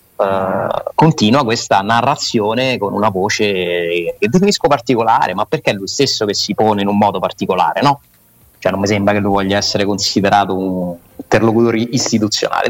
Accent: native